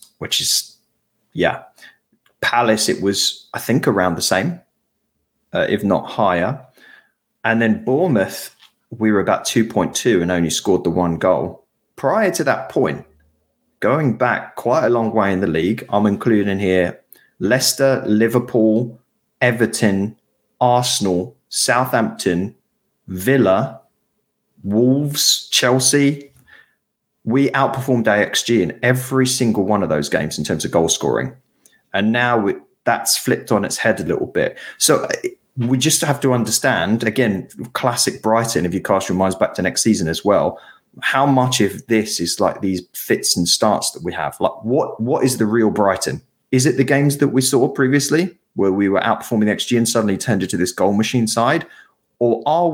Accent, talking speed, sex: British, 165 wpm, male